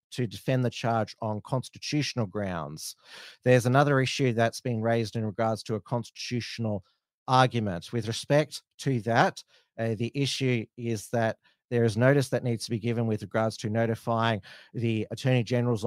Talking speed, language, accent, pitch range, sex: 160 wpm, English, Australian, 105-120 Hz, male